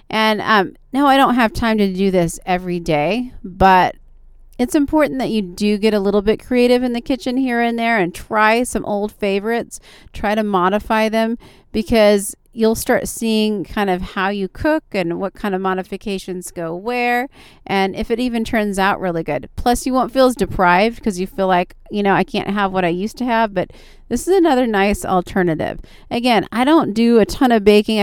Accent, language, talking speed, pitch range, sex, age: American, English, 205 wpm, 190-235 Hz, female, 30-49